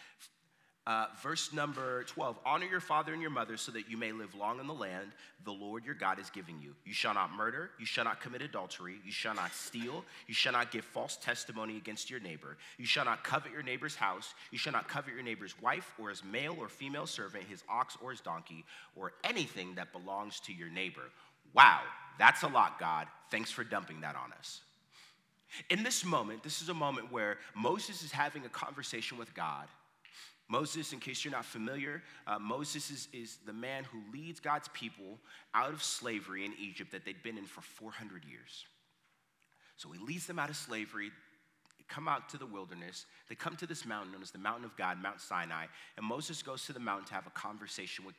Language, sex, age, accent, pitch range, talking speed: English, male, 30-49, American, 100-150 Hz, 210 wpm